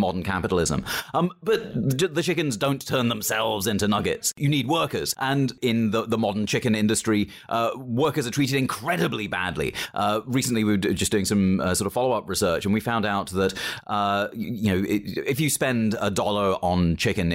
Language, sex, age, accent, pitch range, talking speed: English, male, 30-49, British, 100-140 Hz, 195 wpm